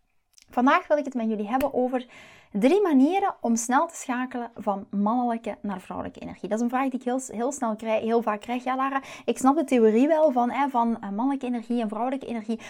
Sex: female